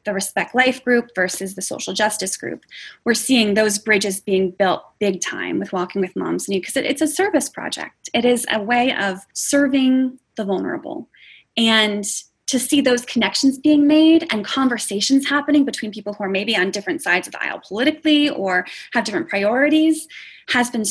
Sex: female